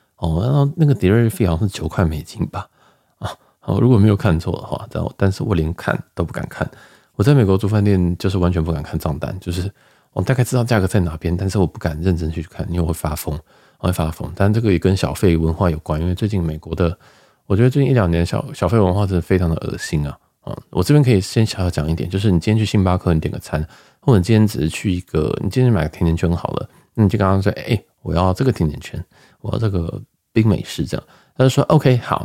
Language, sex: Chinese, male